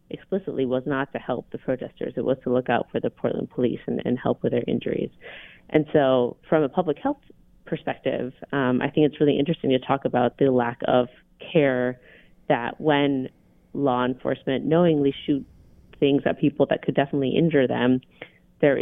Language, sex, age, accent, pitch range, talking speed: English, female, 30-49, American, 125-140 Hz, 180 wpm